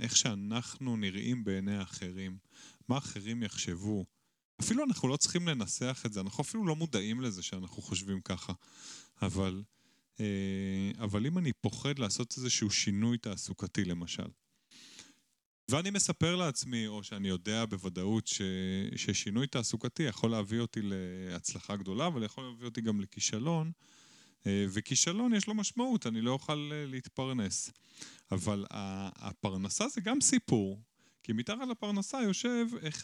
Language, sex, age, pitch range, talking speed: Hebrew, male, 30-49, 100-160 Hz, 130 wpm